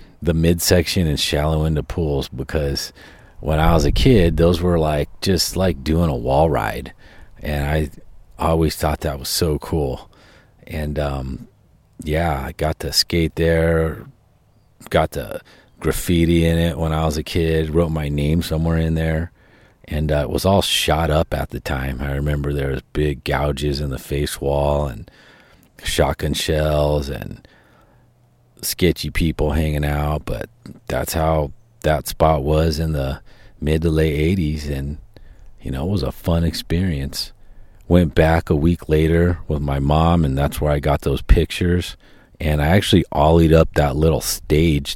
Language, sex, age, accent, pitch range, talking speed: English, male, 40-59, American, 75-85 Hz, 165 wpm